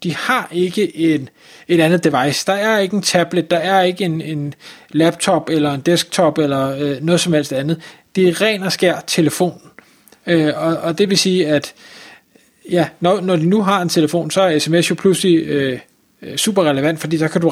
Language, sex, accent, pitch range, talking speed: Danish, male, native, 160-200 Hz, 205 wpm